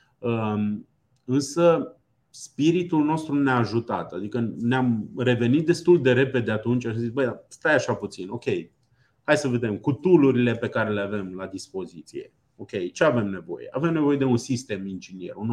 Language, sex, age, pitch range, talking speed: Romanian, male, 30-49, 120-155 Hz, 160 wpm